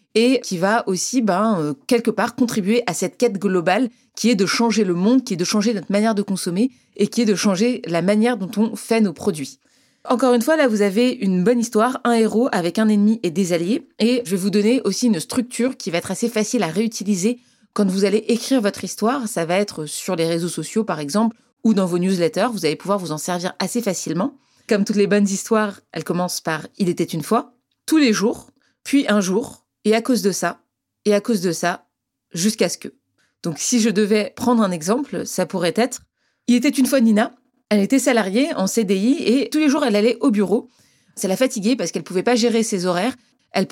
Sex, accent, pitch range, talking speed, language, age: female, French, 190-240 Hz, 240 wpm, French, 30-49